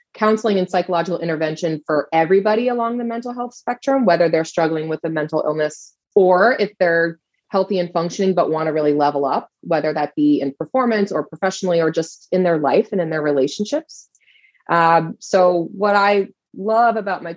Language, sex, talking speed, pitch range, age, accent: English, female, 185 wpm, 155-185 Hz, 20-39, American